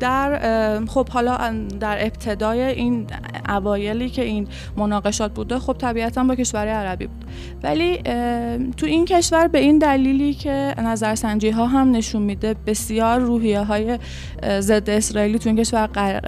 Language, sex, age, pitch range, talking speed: Persian, female, 20-39, 210-270 Hz, 150 wpm